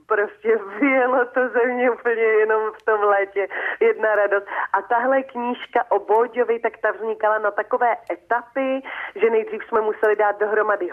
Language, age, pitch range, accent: Czech, 30-49, 180-225 Hz, native